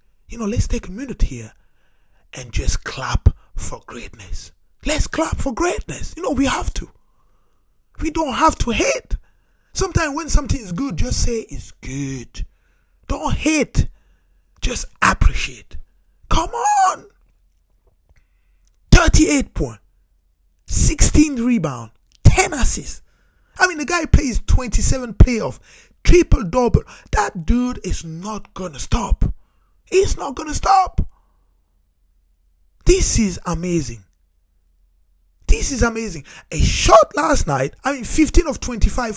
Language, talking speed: English, 125 wpm